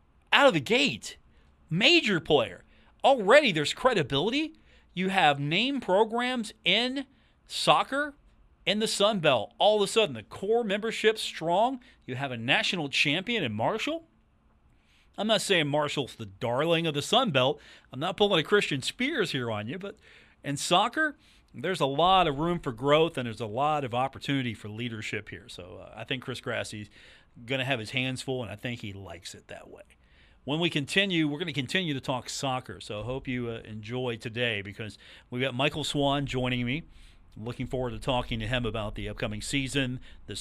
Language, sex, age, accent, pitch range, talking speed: English, male, 40-59, American, 120-155 Hz, 190 wpm